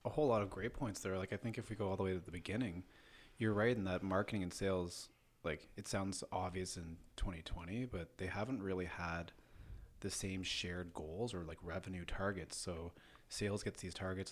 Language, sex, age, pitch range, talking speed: English, male, 20-39, 85-105 Hz, 210 wpm